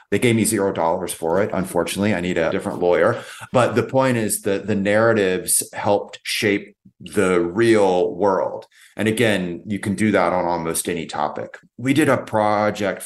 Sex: male